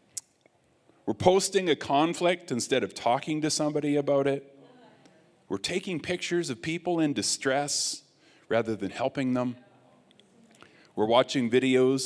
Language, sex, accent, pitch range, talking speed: English, male, American, 110-155 Hz, 125 wpm